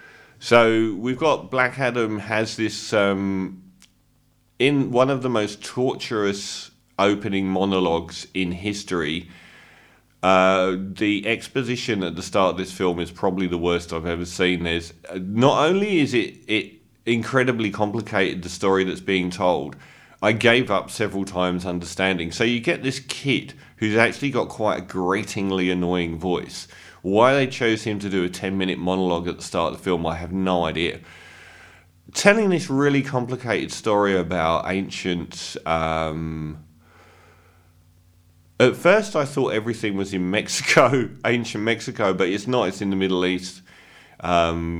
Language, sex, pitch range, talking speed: English, male, 90-115 Hz, 155 wpm